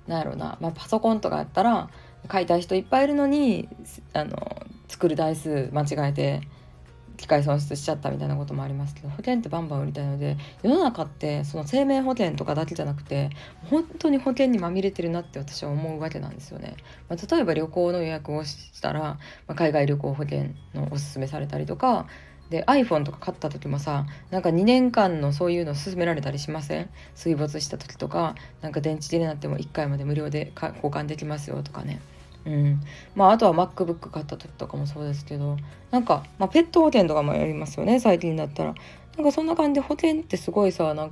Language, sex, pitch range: Japanese, female, 145-185 Hz